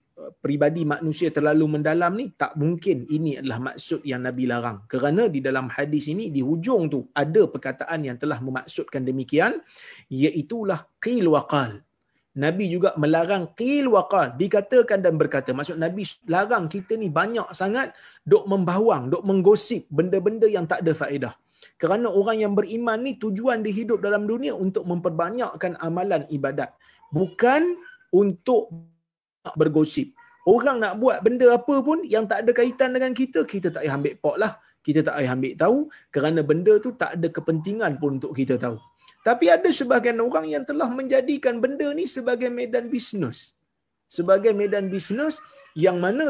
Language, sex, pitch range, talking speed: Malay, male, 155-240 Hz, 155 wpm